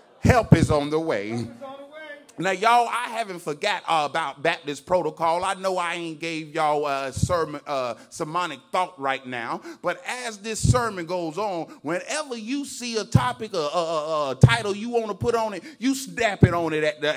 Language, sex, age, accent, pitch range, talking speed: English, male, 30-49, American, 155-230 Hz, 190 wpm